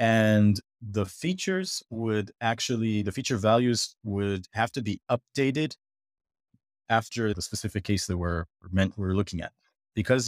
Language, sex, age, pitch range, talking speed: English, male, 30-49, 95-115 Hz, 140 wpm